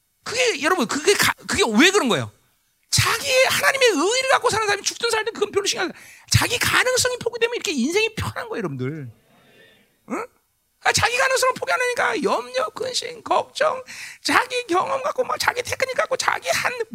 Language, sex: Korean, male